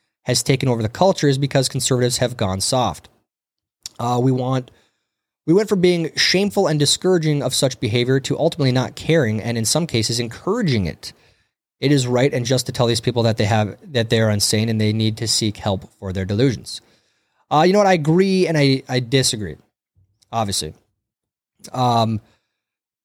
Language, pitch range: English, 110-150 Hz